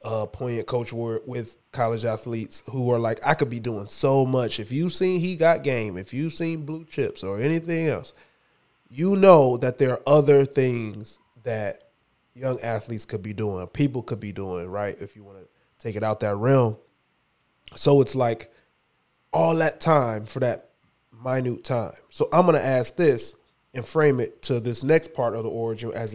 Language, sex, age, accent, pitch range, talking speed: English, male, 20-39, American, 115-140 Hz, 195 wpm